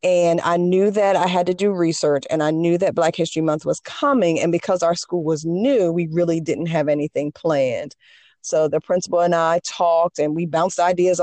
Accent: American